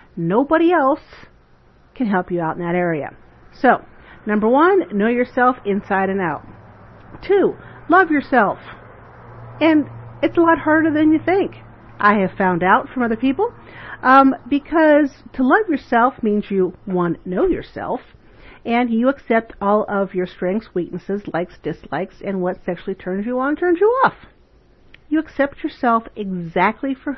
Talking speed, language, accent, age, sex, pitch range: 150 wpm, English, American, 50-69, female, 185-295 Hz